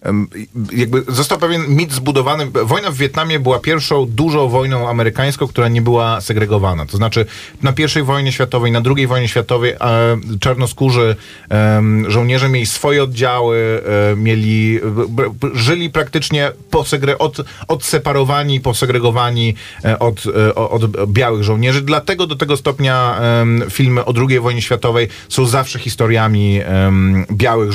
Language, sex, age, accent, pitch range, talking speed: Polish, male, 30-49, native, 110-135 Hz, 145 wpm